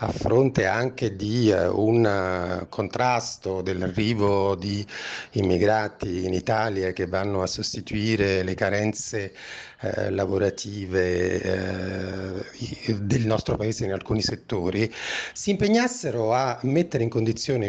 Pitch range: 100-115 Hz